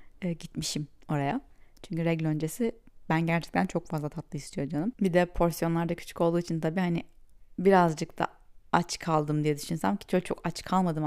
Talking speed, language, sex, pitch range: 175 wpm, Turkish, female, 165-215 Hz